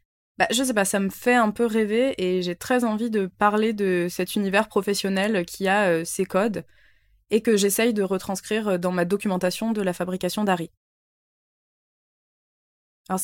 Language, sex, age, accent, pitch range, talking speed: French, female, 20-39, French, 175-220 Hz, 170 wpm